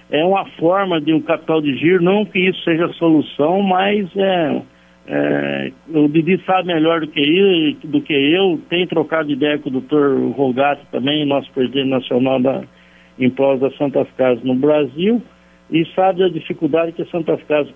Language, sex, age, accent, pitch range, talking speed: Portuguese, male, 60-79, Brazilian, 140-190 Hz, 185 wpm